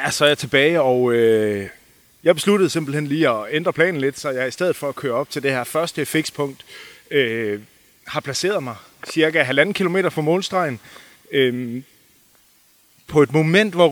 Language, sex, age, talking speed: Danish, male, 30-49, 180 wpm